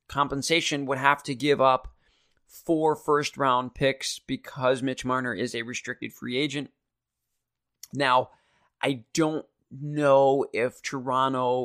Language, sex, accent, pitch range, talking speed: English, male, American, 125-145 Hz, 120 wpm